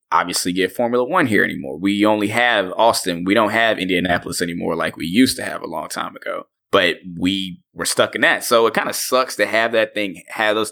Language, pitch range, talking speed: English, 90-110 Hz, 230 wpm